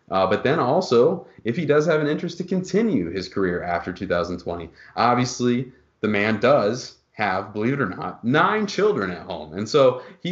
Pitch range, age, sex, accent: 95-120 Hz, 30-49, male, American